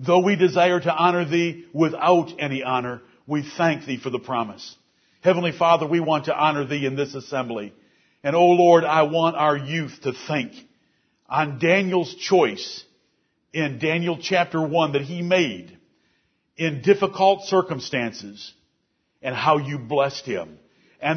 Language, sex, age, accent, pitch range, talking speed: English, male, 50-69, American, 140-180 Hz, 150 wpm